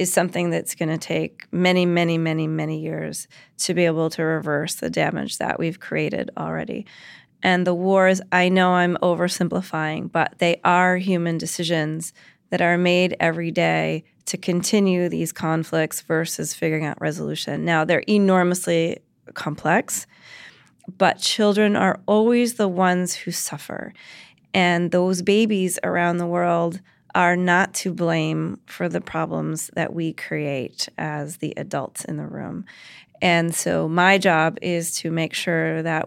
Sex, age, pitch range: female, 30-49, 165-190 Hz